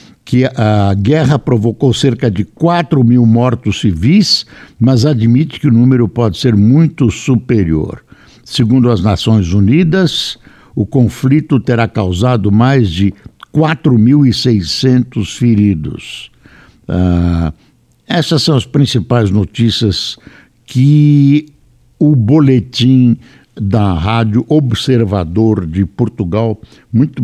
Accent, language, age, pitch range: Brazilian, Portuguese, 60-79, 105-130 Hz